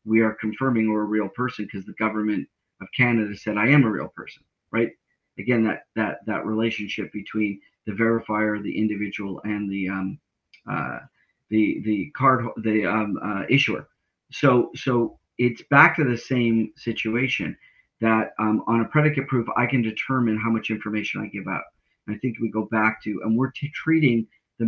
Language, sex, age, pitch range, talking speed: English, male, 40-59, 105-125 Hz, 180 wpm